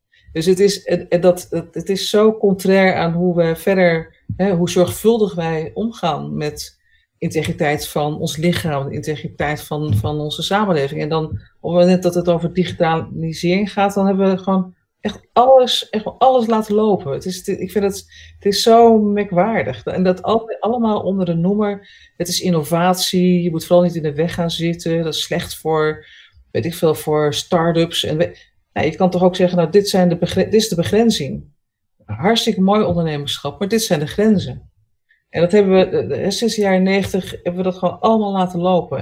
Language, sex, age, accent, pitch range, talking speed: Dutch, female, 40-59, Dutch, 165-195 Hz, 185 wpm